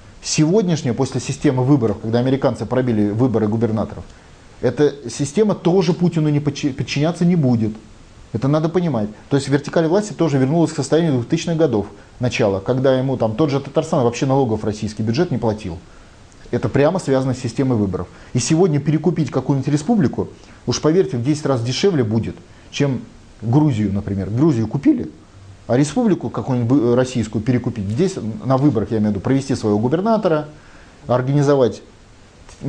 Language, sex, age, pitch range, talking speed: Russian, male, 30-49, 110-150 Hz, 150 wpm